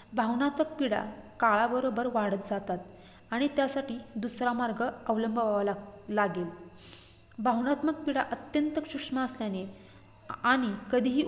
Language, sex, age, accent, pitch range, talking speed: Marathi, female, 20-39, native, 205-260 Hz, 100 wpm